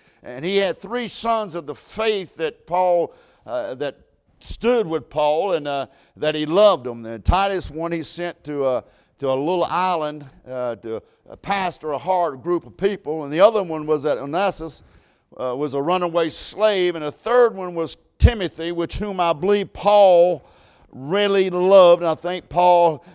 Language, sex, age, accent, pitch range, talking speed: English, male, 50-69, American, 165-205 Hz, 180 wpm